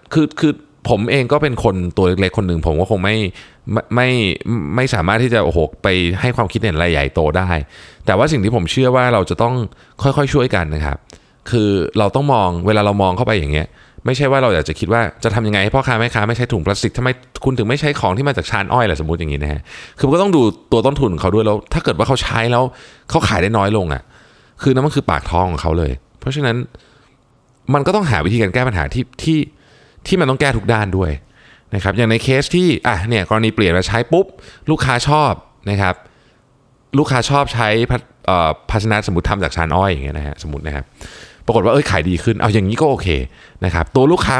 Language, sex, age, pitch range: Thai, male, 20-39, 90-130 Hz